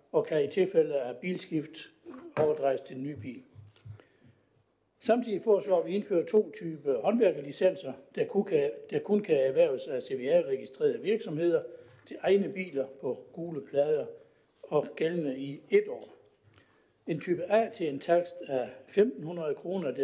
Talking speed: 140 wpm